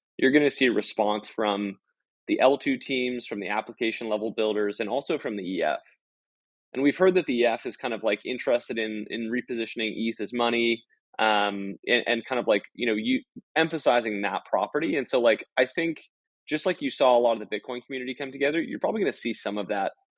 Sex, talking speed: male, 220 wpm